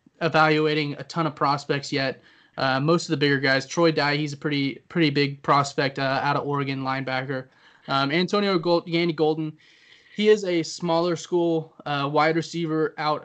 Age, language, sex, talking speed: 20-39, English, male, 170 wpm